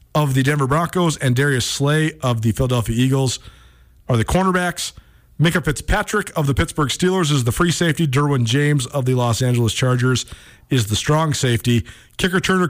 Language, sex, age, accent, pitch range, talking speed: English, male, 40-59, American, 125-165 Hz, 170 wpm